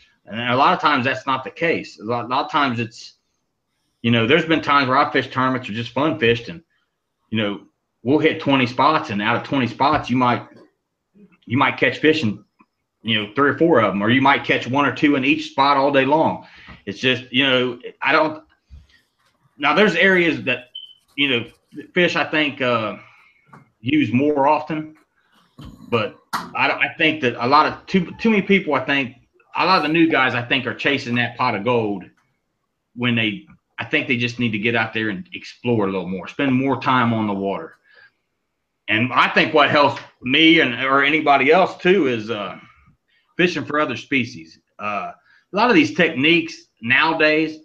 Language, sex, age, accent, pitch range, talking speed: English, male, 30-49, American, 120-155 Hz, 205 wpm